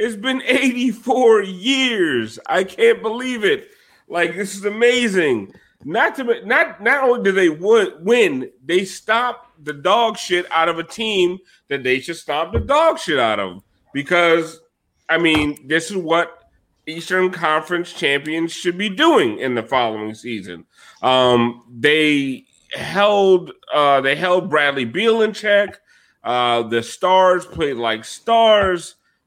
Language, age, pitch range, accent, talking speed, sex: English, 30-49, 130-190 Hz, American, 145 wpm, male